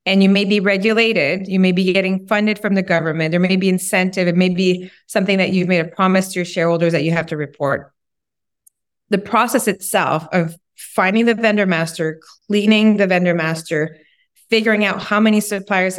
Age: 20-39